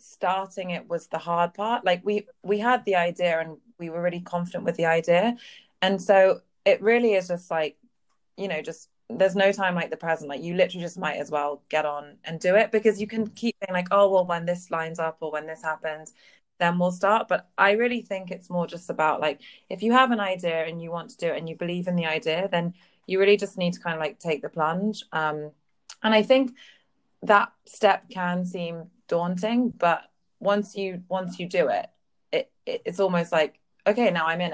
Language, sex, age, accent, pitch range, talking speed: English, female, 20-39, British, 165-195 Hz, 225 wpm